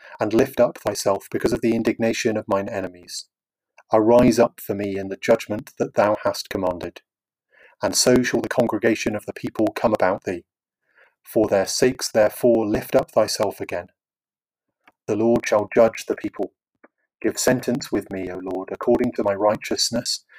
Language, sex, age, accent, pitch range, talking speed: English, male, 30-49, British, 105-120 Hz, 170 wpm